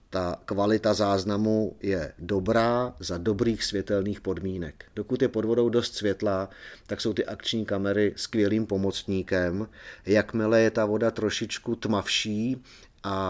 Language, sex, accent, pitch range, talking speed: Czech, male, native, 95-110 Hz, 130 wpm